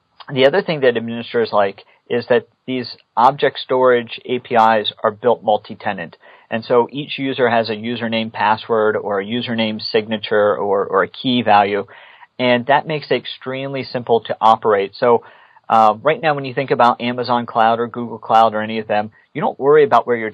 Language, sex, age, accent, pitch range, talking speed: English, male, 40-59, American, 110-130 Hz, 185 wpm